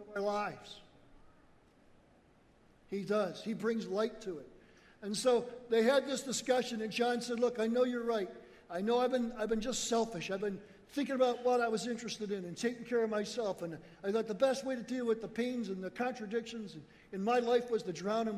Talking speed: 210 wpm